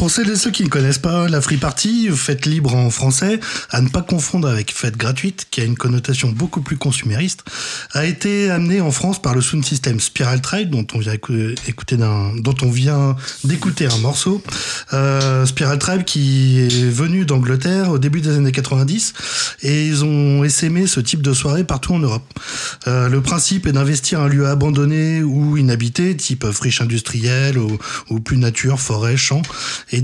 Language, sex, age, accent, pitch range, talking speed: French, male, 20-39, French, 130-155 Hz, 175 wpm